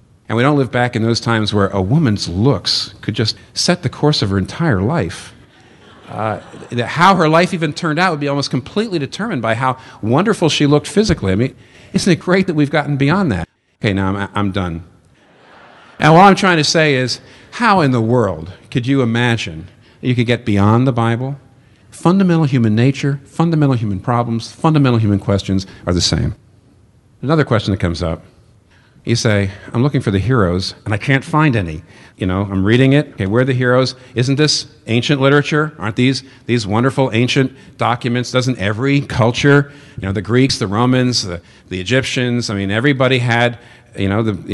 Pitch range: 110-140 Hz